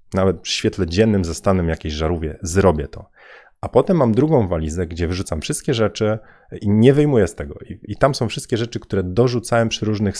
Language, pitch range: Polish, 90-110 Hz